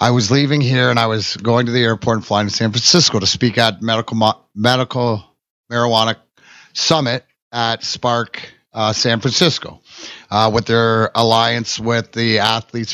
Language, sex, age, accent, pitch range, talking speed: English, male, 30-49, American, 110-135 Hz, 160 wpm